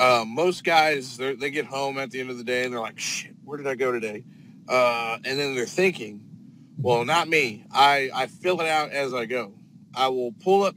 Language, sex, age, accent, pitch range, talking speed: English, male, 40-59, American, 130-165 Hz, 230 wpm